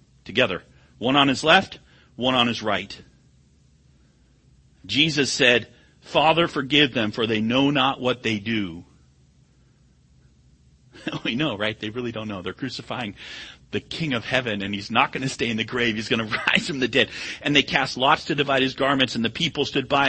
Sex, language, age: male, English, 40-59